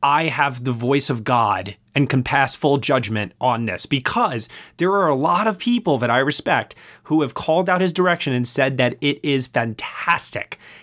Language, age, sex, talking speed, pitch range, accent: English, 30-49, male, 195 wpm, 125-170 Hz, American